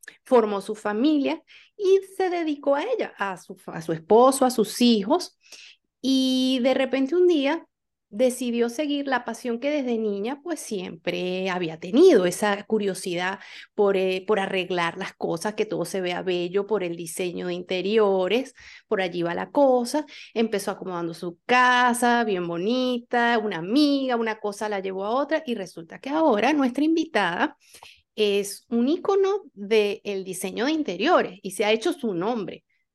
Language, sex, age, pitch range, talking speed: Spanish, female, 30-49, 190-270 Hz, 160 wpm